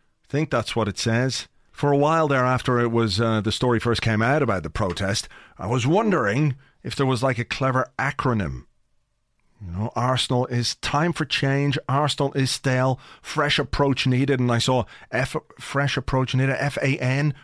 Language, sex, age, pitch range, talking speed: English, male, 30-49, 120-145 Hz, 180 wpm